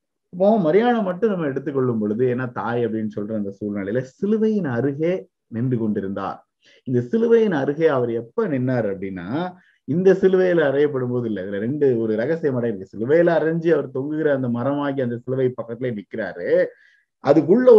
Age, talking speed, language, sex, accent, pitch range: 30-49, 135 wpm, Tamil, male, native, 125-175 Hz